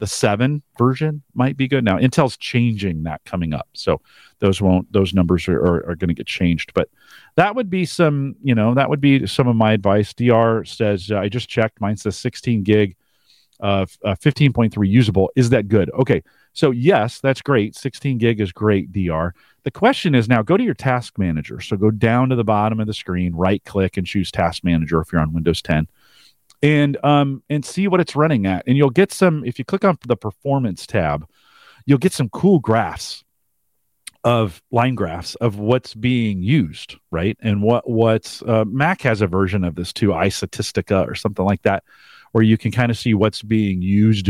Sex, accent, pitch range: male, American, 100-135 Hz